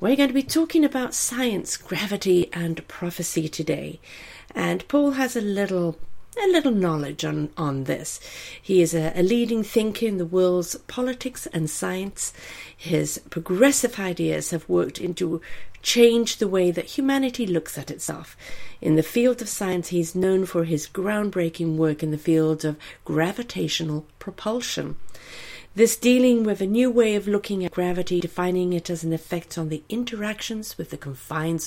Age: 50-69